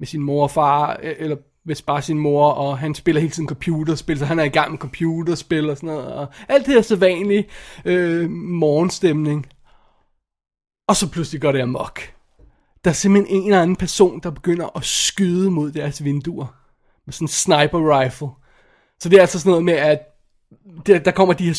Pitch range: 150-185 Hz